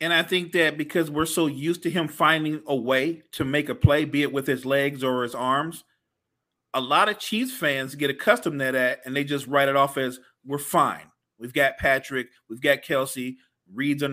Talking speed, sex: 215 wpm, male